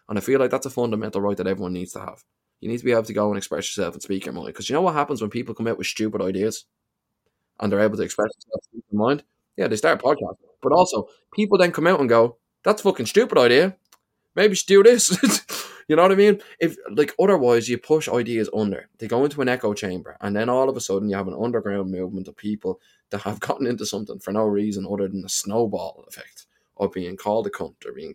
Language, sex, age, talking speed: English, male, 20-39, 255 wpm